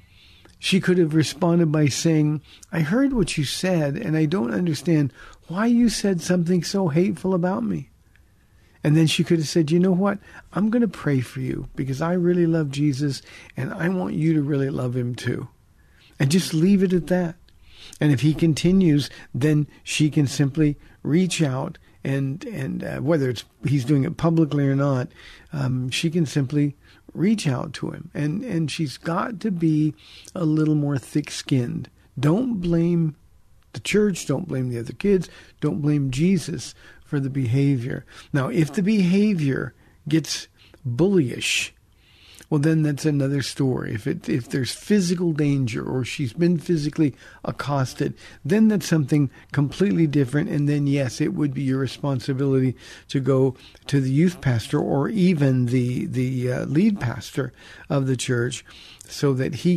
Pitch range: 130-170 Hz